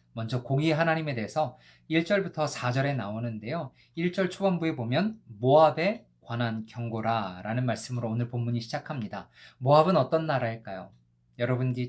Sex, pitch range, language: male, 115-165 Hz, Korean